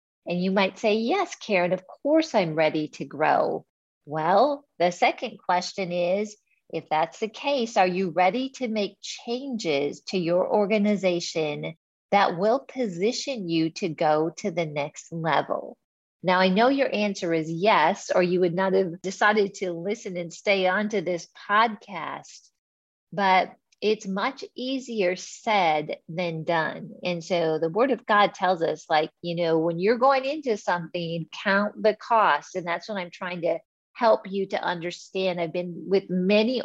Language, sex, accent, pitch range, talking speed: English, female, American, 170-210 Hz, 165 wpm